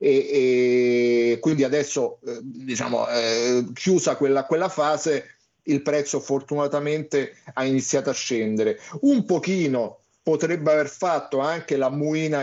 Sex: male